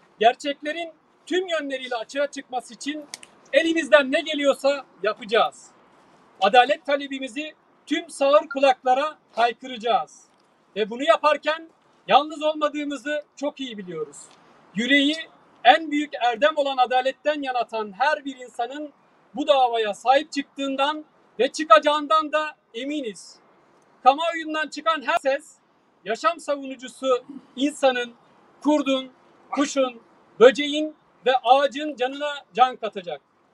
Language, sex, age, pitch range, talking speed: Turkish, male, 40-59, 245-300 Hz, 105 wpm